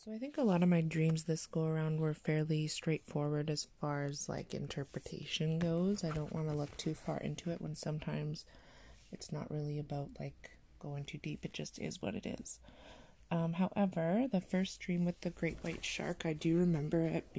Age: 20-39